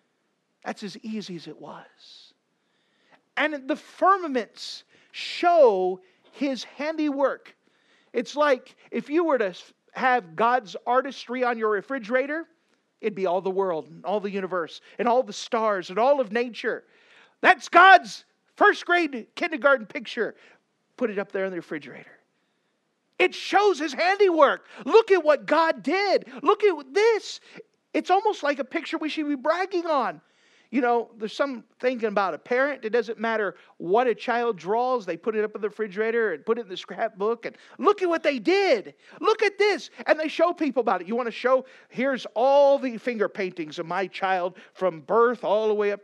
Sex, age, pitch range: male, 40-59, 220-345 Hz